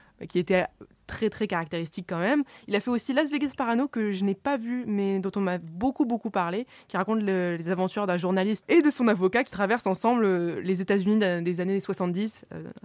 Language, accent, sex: French, French, female